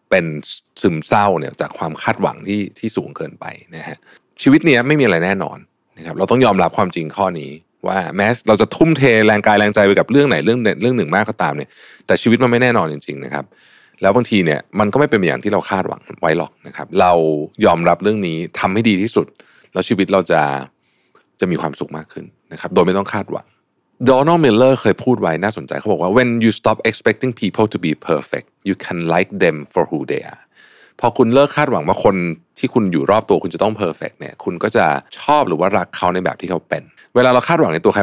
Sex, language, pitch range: male, Thai, 85-125 Hz